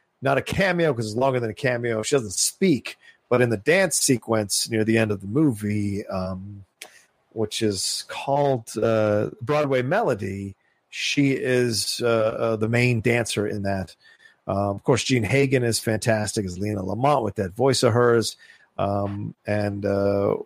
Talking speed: 165 wpm